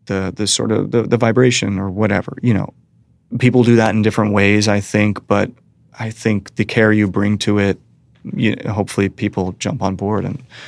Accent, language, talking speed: American, English, 195 wpm